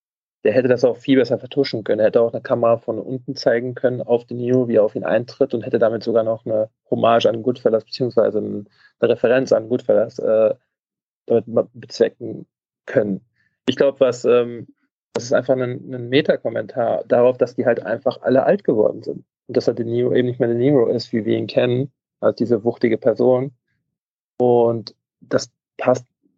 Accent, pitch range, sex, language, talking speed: German, 120-135 Hz, male, German, 185 wpm